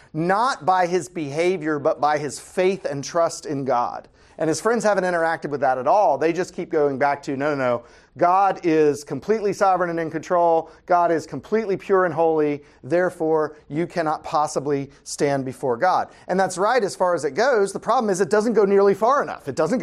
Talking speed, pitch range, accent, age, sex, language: 205 wpm, 145-200 Hz, American, 40-59, male, English